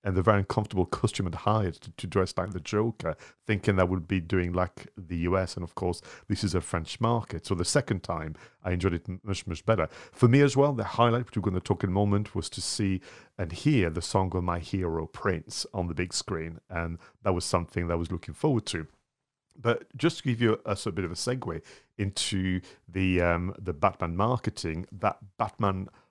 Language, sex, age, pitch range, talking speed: English, male, 40-59, 90-110 Hz, 225 wpm